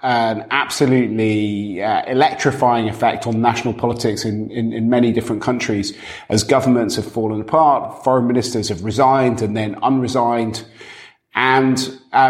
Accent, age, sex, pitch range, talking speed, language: British, 30-49, male, 110-130 Hz, 135 wpm, English